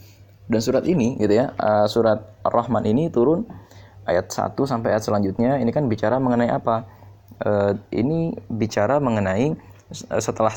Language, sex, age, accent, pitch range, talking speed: Indonesian, male, 20-39, native, 100-120 Hz, 130 wpm